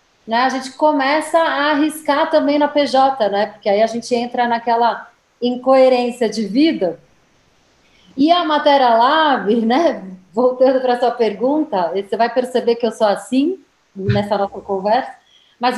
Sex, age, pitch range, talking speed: female, 40-59, 235-300 Hz, 150 wpm